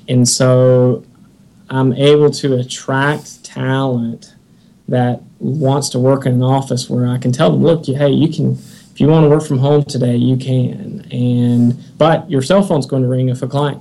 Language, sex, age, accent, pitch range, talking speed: English, male, 20-39, American, 125-145 Hz, 195 wpm